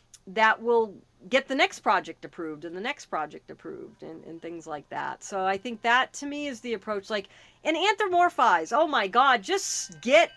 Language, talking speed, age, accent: English, 195 wpm, 40-59, American